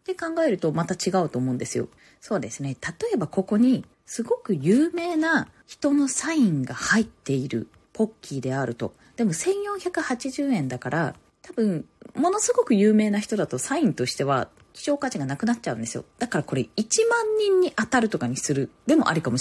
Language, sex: Japanese, female